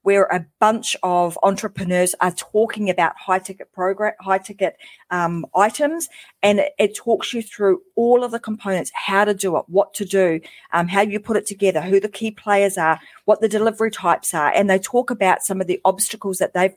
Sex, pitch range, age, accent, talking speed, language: female, 185-220 Hz, 30-49, Australian, 200 wpm, English